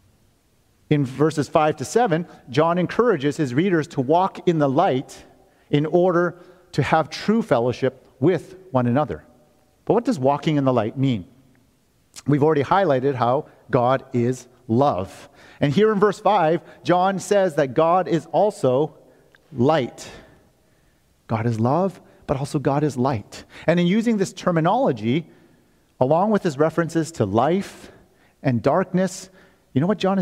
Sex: male